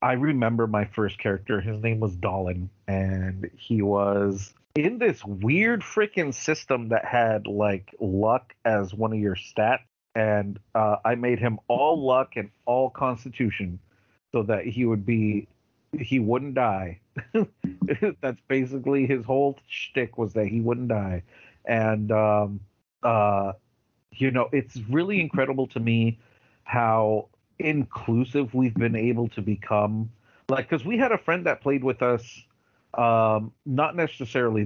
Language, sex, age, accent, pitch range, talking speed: English, male, 40-59, American, 105-130 Hz, 145 wpm